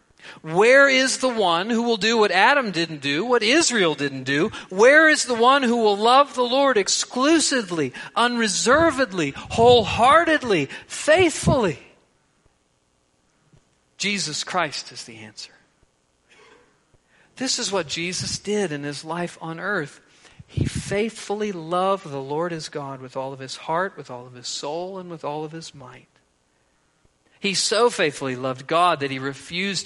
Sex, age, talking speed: male, 50-69, 150 wpm